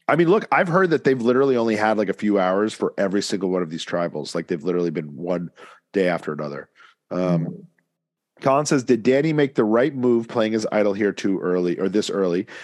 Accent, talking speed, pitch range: American, 225 wpm, 100-130 Hz